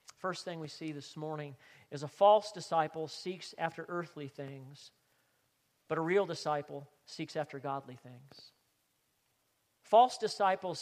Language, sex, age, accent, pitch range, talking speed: English, male, 40-59, American, 145-185 Hz, 135 wpm